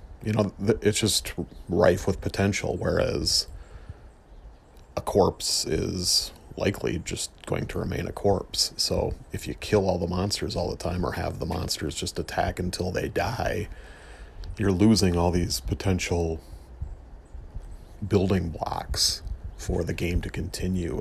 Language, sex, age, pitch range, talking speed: English, male, 40-59, 80-100 Hz, 140 wpm